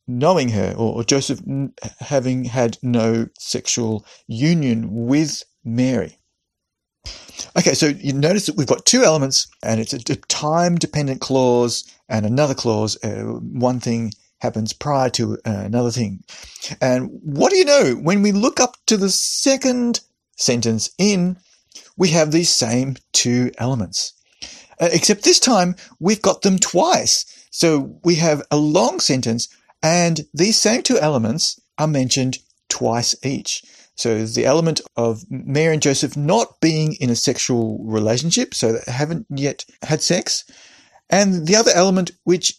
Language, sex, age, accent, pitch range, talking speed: English, male, 40-59, Australian, 120-175 Hz, 145 wpm